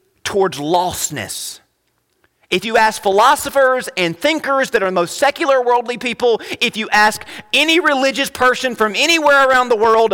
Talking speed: 155 wpm